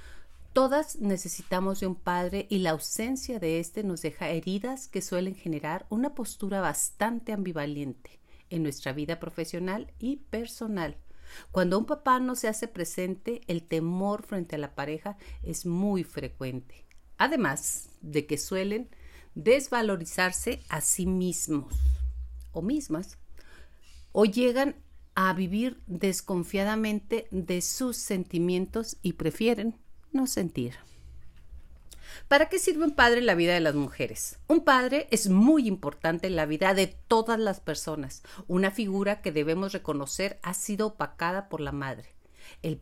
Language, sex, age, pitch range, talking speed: Spanish, female, 50-69, 150-215 Hz, 140 wpm